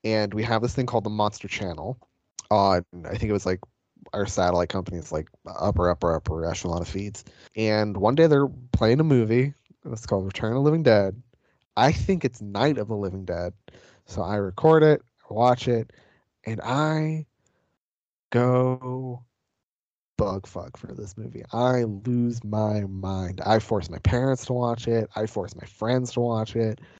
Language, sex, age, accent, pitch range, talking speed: English, male, 20-39, American, 100-125 Hz, 180 wpm